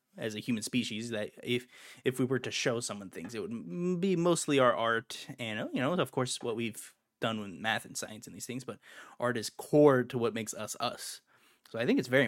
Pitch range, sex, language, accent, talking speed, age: 115-150 Hz, male, English, American, 235 wpm, 10-29